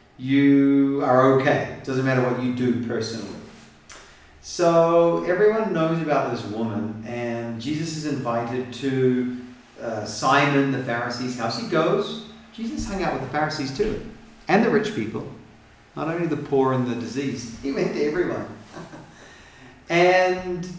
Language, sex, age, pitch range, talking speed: English, male, 40-59, 115-150 Hz, 145 wpm